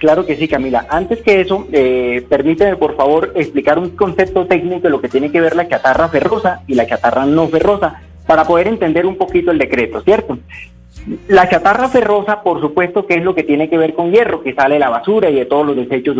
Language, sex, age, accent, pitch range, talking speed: Spanish, male, 30-49, Colombian, 150-205 Hz, 225 wpm